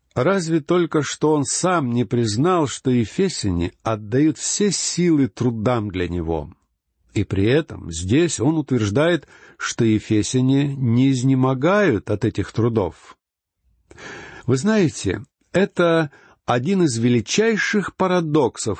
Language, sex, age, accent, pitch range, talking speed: Russian, male, 60-79, native, 115-165 Hz, 110 wpm